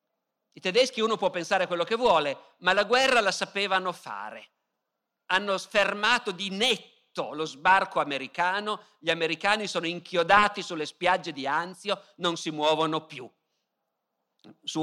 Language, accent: Italian, native